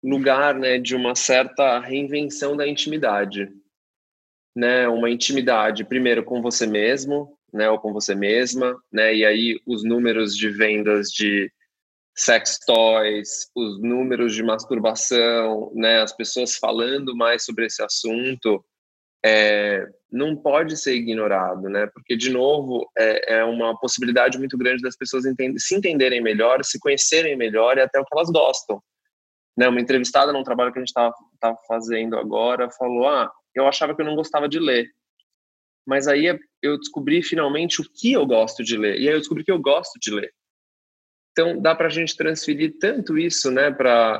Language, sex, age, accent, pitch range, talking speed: Portuguese, male, 20-39, Brazilian, 115-140 Hz, 165 wpm